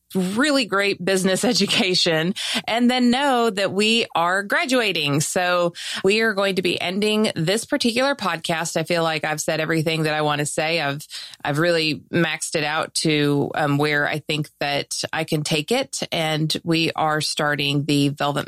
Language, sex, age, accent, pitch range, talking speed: English, female, 30-49, American, 150-195 Hz, 175 wpm